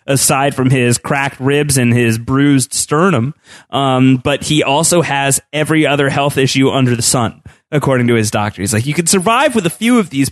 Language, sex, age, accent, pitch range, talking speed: English, male, 30-49, American, 115-150 Hz, 205 wpm